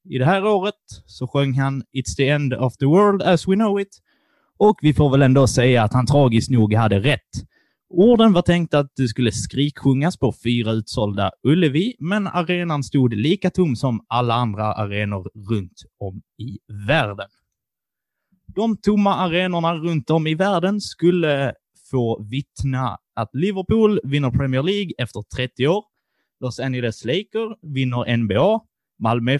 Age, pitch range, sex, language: 20-39, 120-175 Hz, male, Swedish